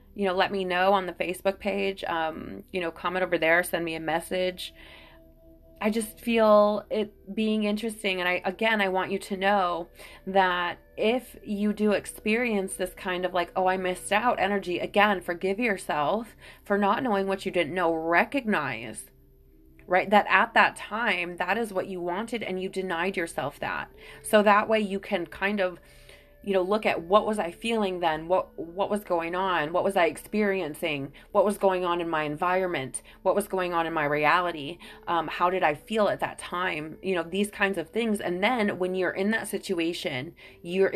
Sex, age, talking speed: female, 30-49, 195 wpm